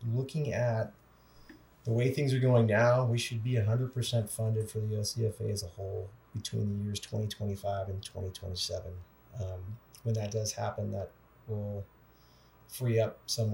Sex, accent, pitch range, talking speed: male, American, 105-120 Hz, 155 wpm